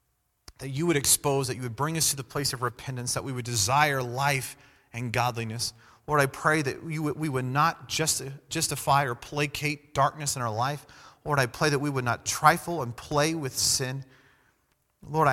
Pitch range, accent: 115-140 Hz, American